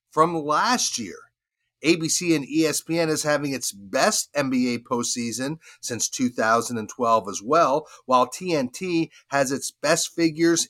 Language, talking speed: English, 125 wpm